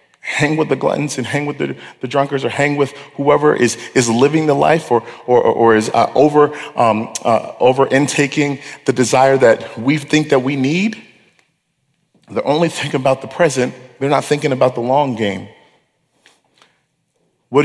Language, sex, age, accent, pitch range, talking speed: English, male, 40-59, American, 130-155 Hz, 175 wpm